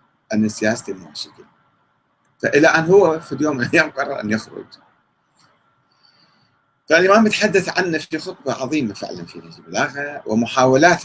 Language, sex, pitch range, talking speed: Arabic, male, 120-175 Hz, 120 wpm